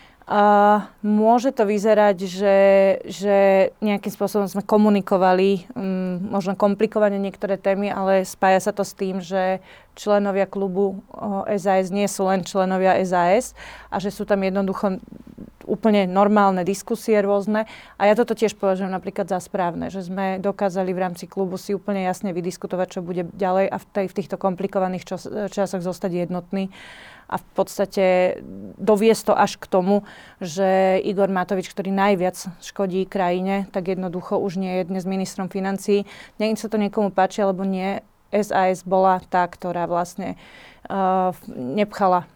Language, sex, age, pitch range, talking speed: Slovak, female, 30-49, 185-200 Hz, 150 wpm